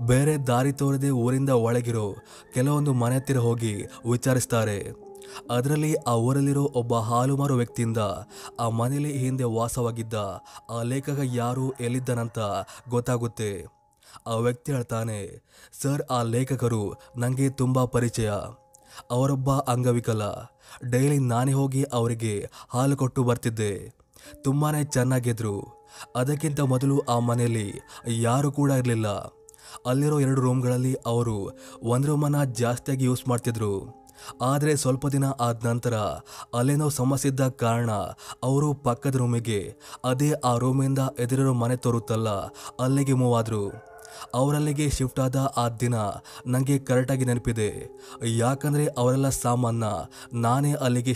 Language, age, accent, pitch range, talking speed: Kannada, 20-39, native, 115-135 Hz, 110 wpm